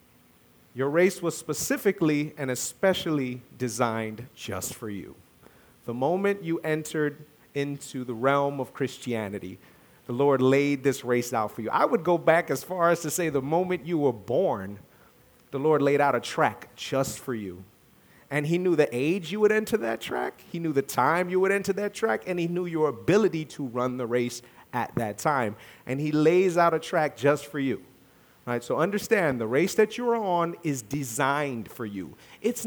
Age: 40-59